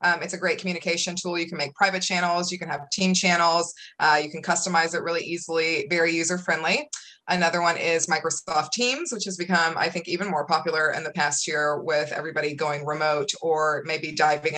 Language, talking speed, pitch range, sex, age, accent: English, 200 wpm, 165-195 Hz, female, 20-39, American